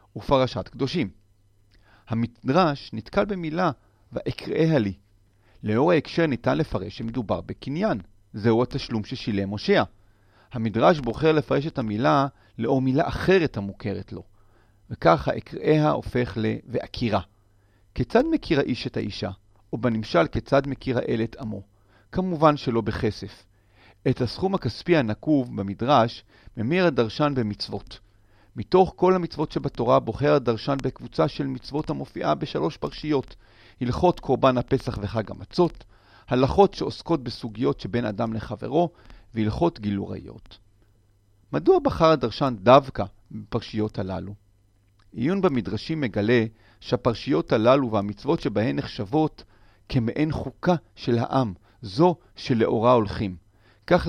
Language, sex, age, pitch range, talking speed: Hebrew, male, 40-59, 100-140 Hz, 110 wpm